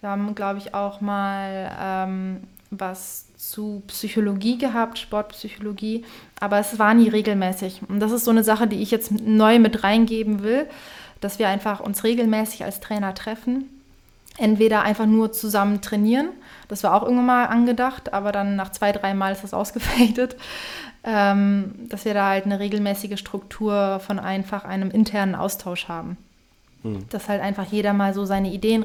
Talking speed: 160 wpm